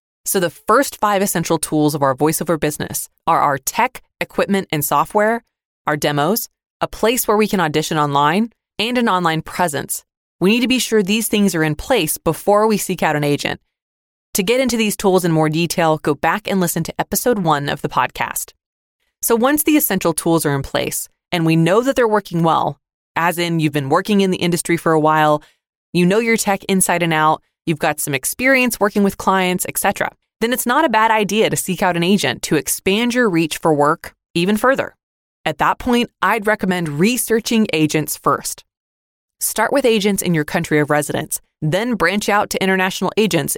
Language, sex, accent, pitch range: English, female, American, 155-215 Hz